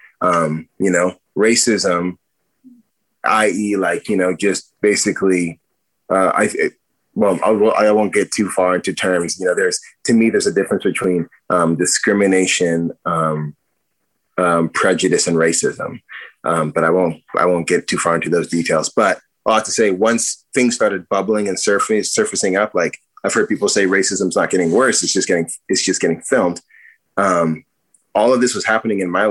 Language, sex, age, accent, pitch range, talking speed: English, male, 30-49, American, 90-105 Hz, 180 wpm